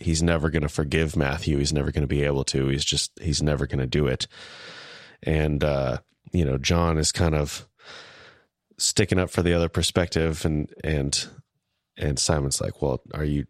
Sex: male